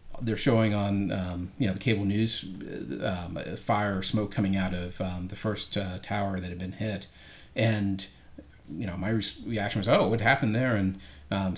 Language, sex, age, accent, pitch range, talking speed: English, male, 40-59, American, 95-105 Hz, 195 wpm